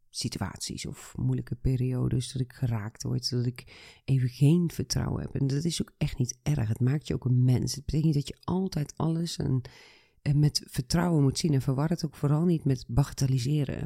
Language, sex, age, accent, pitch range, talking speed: Dutch, female, 30-49, Dutch, 130-160 Hz, 210 wpm